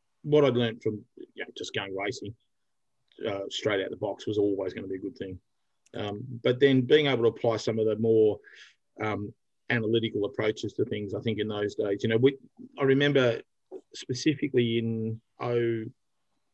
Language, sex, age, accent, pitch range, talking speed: English, male, 30-49, Australian, 105-120 Hz, 185 wpm